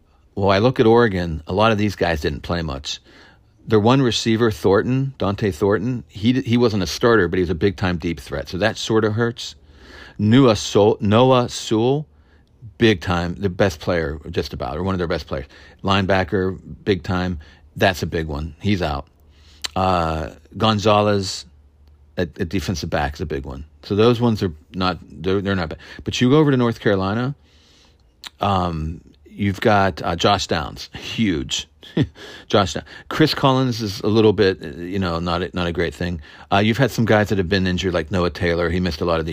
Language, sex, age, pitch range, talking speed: English, male, 40-59, 80-110 Hz, 195 wpm